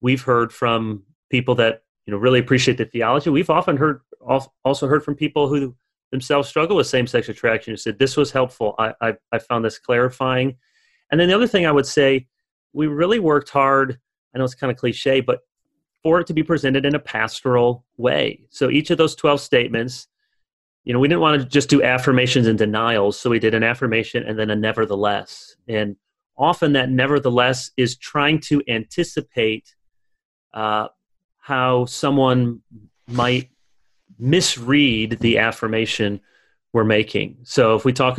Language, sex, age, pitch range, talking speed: English, male, 30-49, 115-145 Hz, 175 wpm